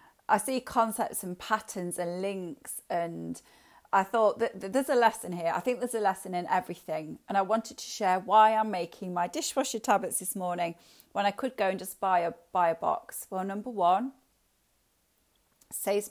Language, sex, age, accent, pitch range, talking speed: English, female, 40-59, British, 180-225 Hz, 190 wpm